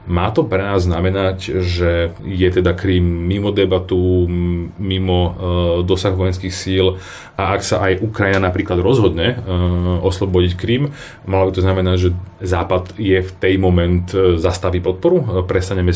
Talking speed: 150 wpm